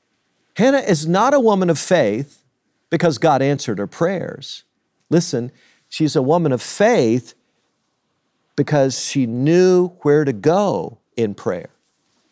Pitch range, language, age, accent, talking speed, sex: 135-185 Hz, English, 50-69, American, 125 wpm, male